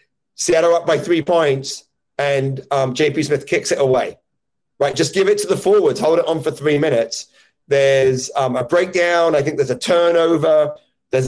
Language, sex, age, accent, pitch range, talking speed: English, male, 30-49, British, 135-175 Hz, 185 wpm